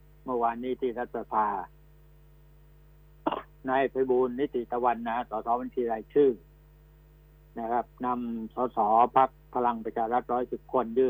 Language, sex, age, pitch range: Thai, male, 60-79, 120-155 Hz